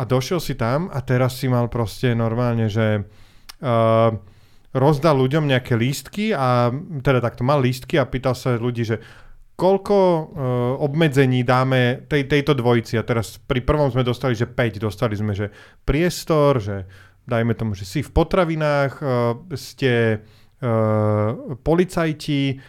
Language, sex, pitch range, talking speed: Slovak, male, 115-140 Hz, 135 wpm